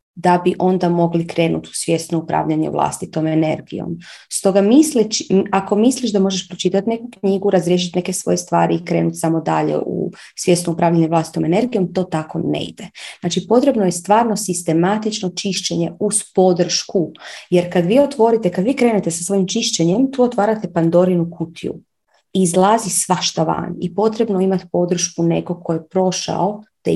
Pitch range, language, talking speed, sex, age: 175-215 Hz, Croatian, 155 wpm, female, 30-49